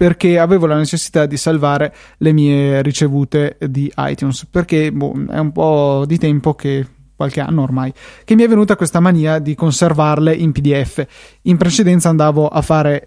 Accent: native